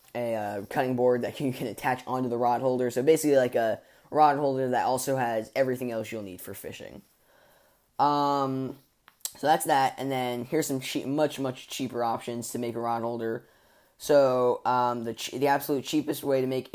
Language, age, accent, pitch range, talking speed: English, 10-29, American, 120-135 Hz, 195 wpm